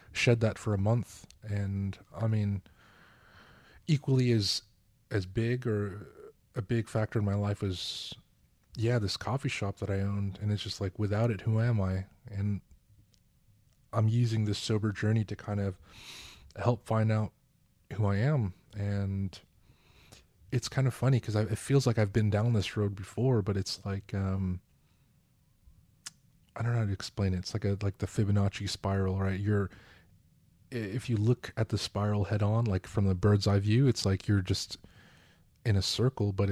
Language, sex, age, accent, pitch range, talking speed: English, male, 20-39, American, 100-115 Hz, 175 wpm